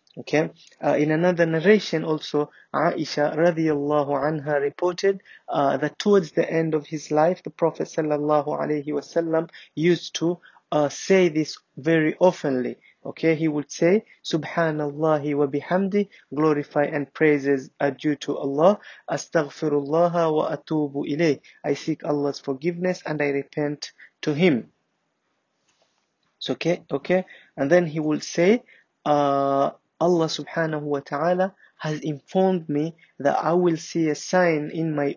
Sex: male